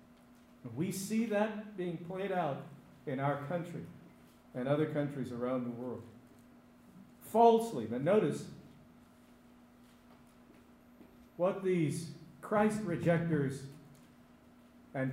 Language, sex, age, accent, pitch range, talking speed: English, male, 50-69, American, 125-180 Hz, 90 wpm